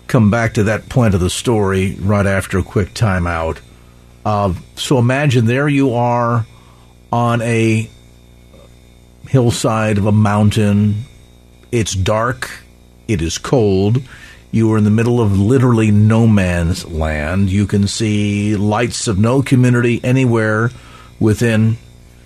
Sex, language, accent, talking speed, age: male, English, American, 135 wpm, 50-69